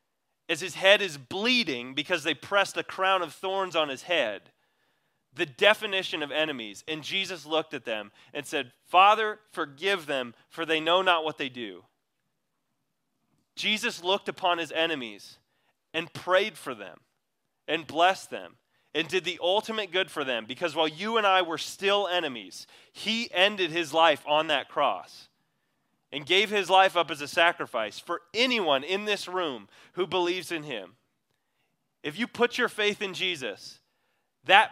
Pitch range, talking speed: 150-190 Hz, 165 wpm